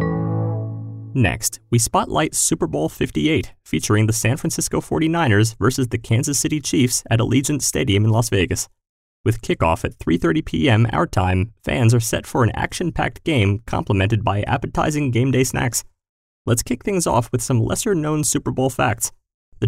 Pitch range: 100-125 Hz